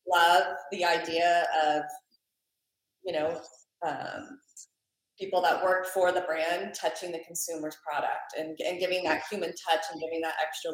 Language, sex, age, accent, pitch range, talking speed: English, female, 20-39, American, 160-190 Hz, 150 wpm